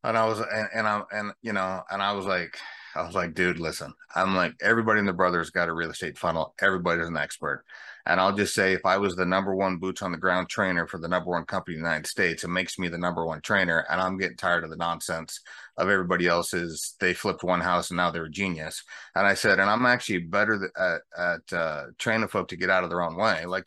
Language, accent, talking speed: English, American, 260 wpm